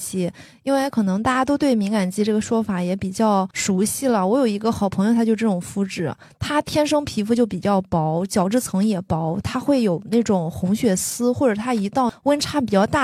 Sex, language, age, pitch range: female, Chinese, 20-39, 185-230 Hz